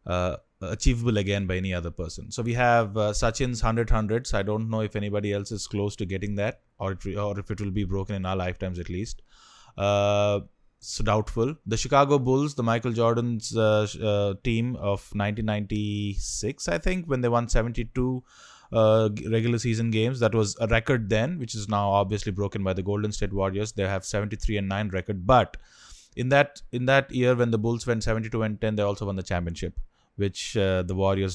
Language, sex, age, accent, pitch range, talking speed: English, male, 20-39, Indian, 100-120 Hz, 215 wpm